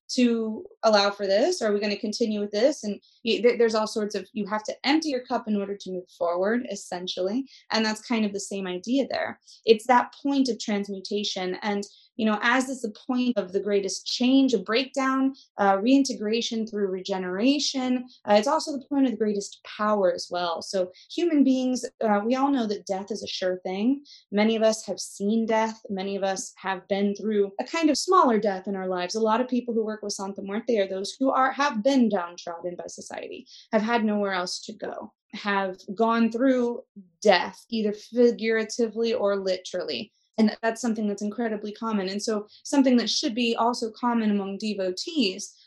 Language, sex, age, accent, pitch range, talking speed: English, female, 20-39, American, 195-240 Hz, 200 wpm